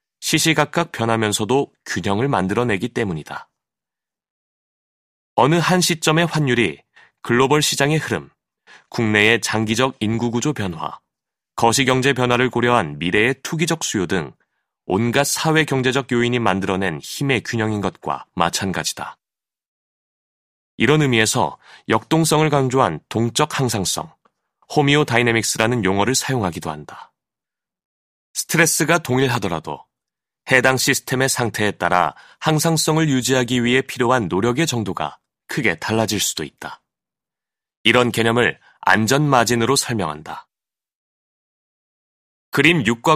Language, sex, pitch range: Korean, male, 110-145 Hz